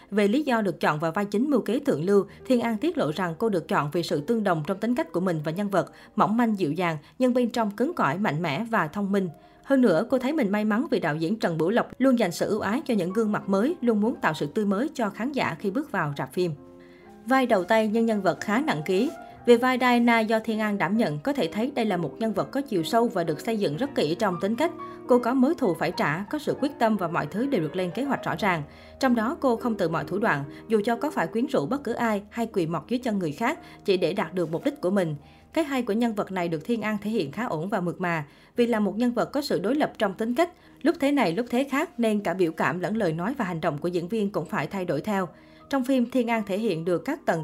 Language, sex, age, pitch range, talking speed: Vietnamese, female, 20-39, 180-240 Hz, 295 wpm